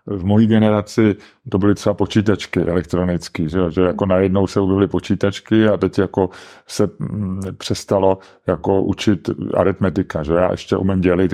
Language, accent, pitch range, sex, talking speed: English, Czech, 95-110 Hz, male, 150 wpm